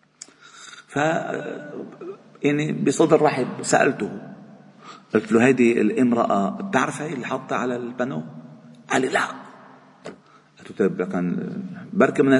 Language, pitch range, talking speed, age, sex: Arabic, 155-210 Hz, 95 wpm, 50-69, male